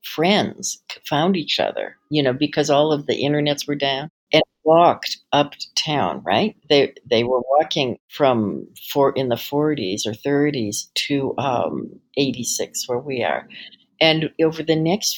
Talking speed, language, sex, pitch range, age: 160 wpm, English, female, 145-180 Hz, 60-79